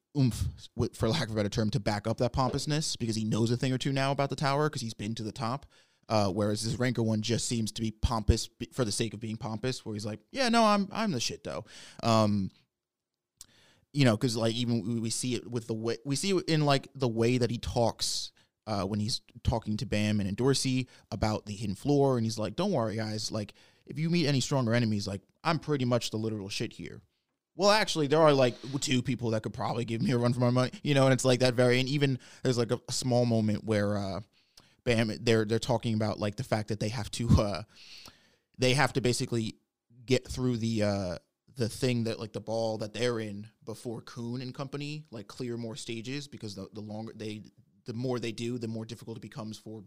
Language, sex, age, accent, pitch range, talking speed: English, male, 20-39, American, 110-130 Hz, 235 wpm